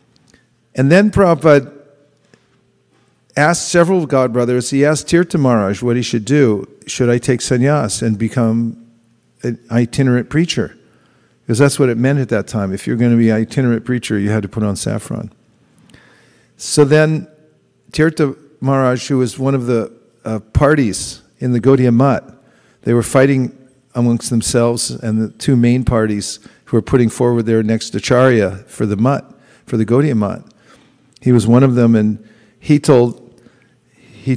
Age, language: 50-69, English